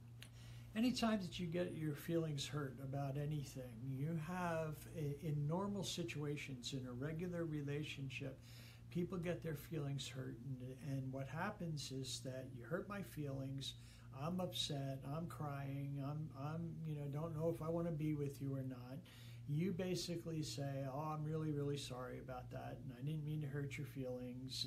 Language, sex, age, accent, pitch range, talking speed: English, male, 60-79, American, 130-165 Hz, 175 wpm